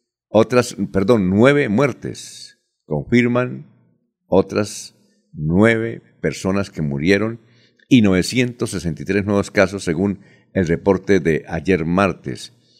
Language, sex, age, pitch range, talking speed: Spanish, male, 60-79, 90-115 Hz, 95 wpm